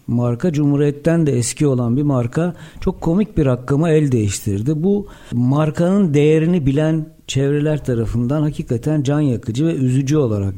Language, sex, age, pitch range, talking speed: Turkish, male, 60-79, 135-185 Hz, 140 wpm